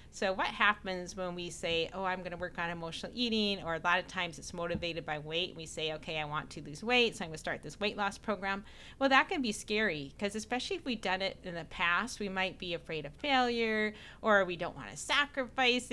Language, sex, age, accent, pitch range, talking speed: English, female, 30-49, American, 175-230 Hz, 235 wpm